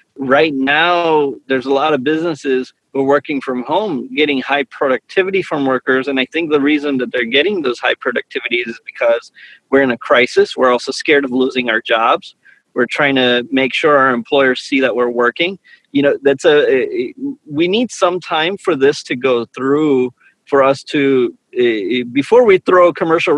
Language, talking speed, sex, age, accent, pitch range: English, 185 wpm, male, 30-49, American, 130-175 Hz